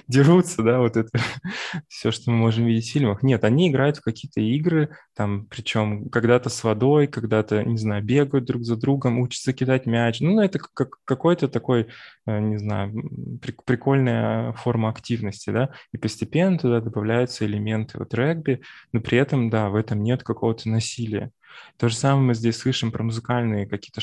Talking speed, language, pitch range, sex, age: 170 wpm, Russian, 115-135 Hz, male, 20-39